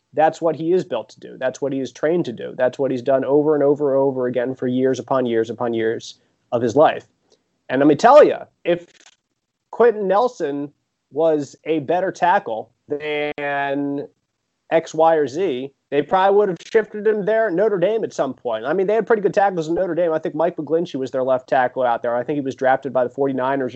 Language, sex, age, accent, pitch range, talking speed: English, male, 30-49, American, 135-180 Hz, 230 wpm